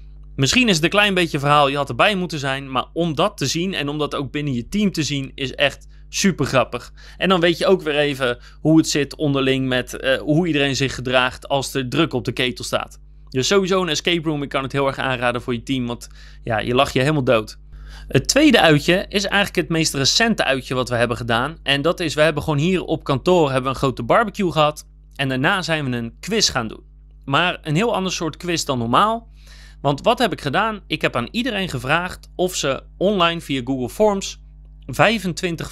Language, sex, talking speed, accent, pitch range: Dutch, male, 230 wpm, Dutch, 130-175 Hz